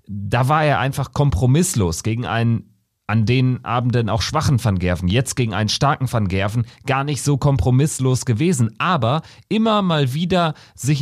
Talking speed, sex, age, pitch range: 165 wpm, male, 40-59, 100-130 Hz